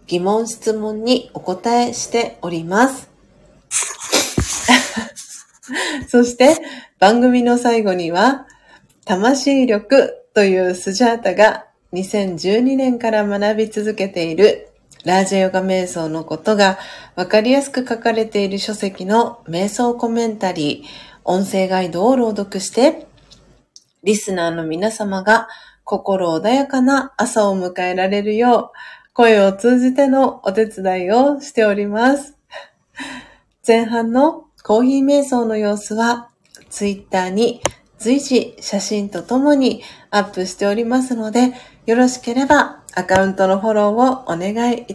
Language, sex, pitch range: Japanese, female, 195-255 Hz